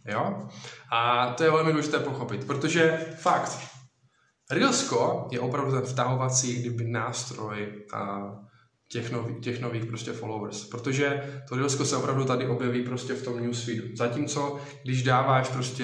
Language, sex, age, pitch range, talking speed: Czech, male, 20-39, 125-145 Hz, 145 wpm